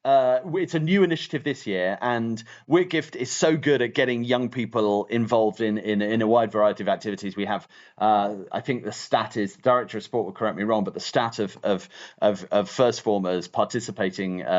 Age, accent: 40-59, British